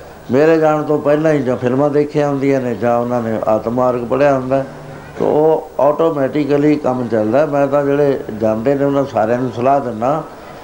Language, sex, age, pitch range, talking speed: Punjabi, male, 70-89, 125-155 Hz, 175 wpm